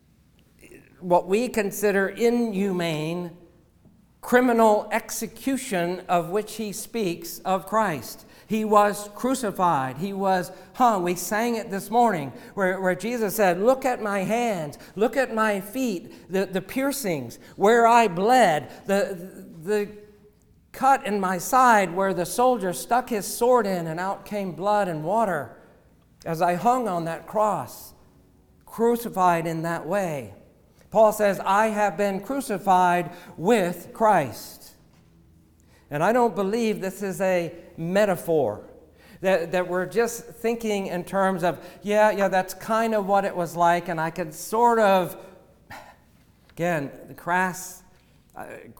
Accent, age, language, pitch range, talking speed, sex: American, 50-69, English, 170-215 Hz, 140 wpm, male